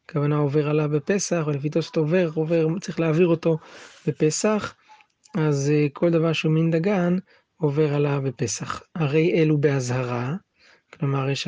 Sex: male